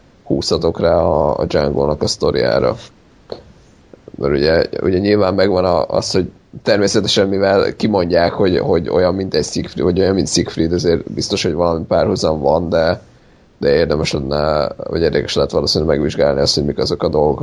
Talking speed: 165 wpm